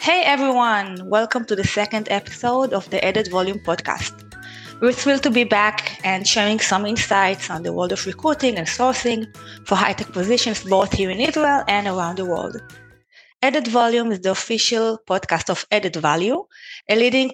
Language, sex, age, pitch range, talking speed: Hebrew, female, 20-39, 185-235 Hz, 175 wpm